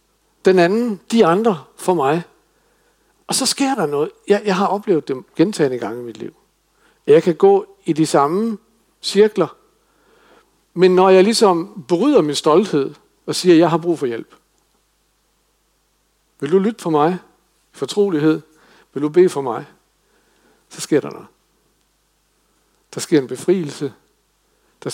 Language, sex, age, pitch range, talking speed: Danish, male, 60-79, 150-205 Hz, 155 wpm